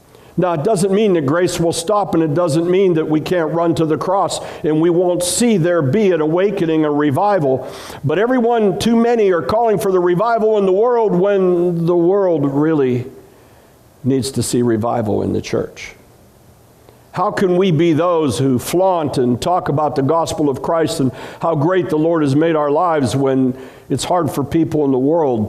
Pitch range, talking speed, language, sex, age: 130-170 Hz, 195 wpm, English, male, 60-79